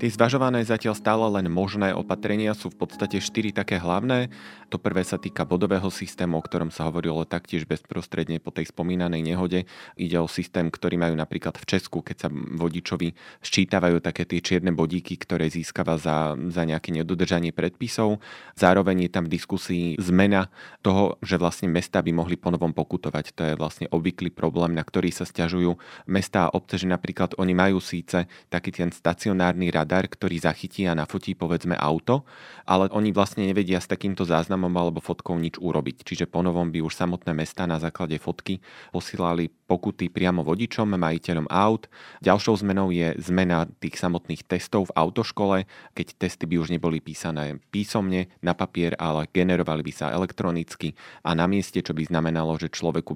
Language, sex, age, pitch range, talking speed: Slovak, male, 30-49, 85-95 Hz, 170 wpm